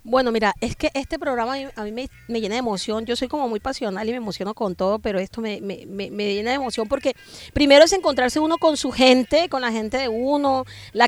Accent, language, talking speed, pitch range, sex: American, Spanish, 250 wpm, 225-275 Hz, female